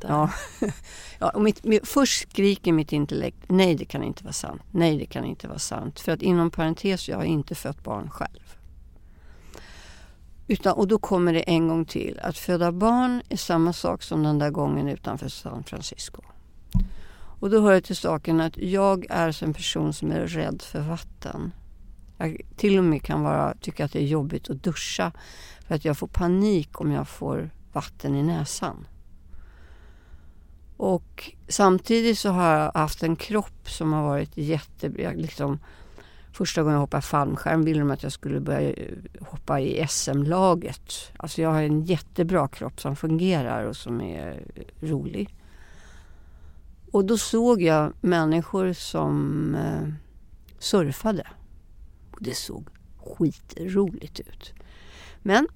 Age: 60-79